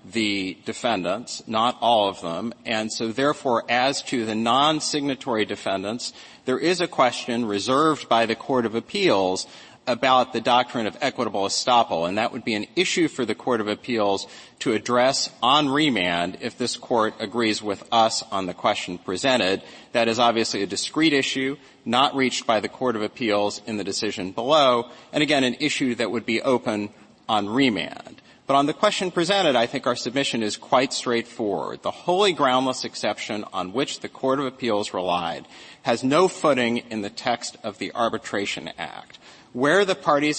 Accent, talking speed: American, 175 wpm